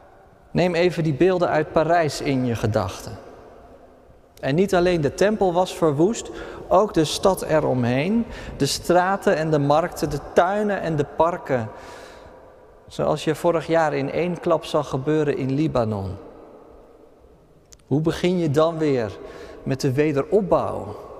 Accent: Dutch